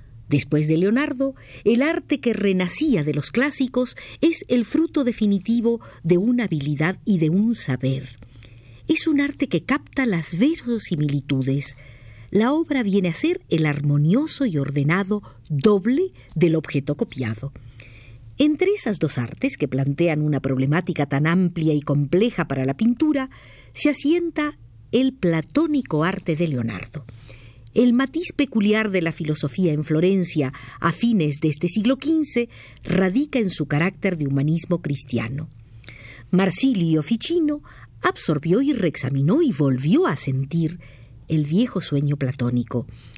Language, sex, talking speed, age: Spanish, female, 135 wpm, 50-69